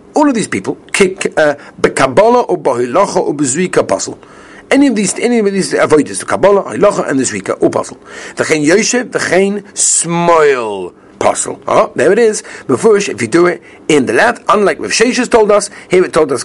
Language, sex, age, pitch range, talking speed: English, male, 60-79, 125-205 Hz, 180 wpm